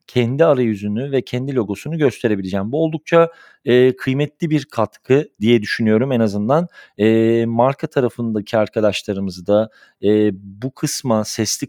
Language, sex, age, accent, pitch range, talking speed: Turkish, male, 40-59, native, 105-130 Hz, 130 wpm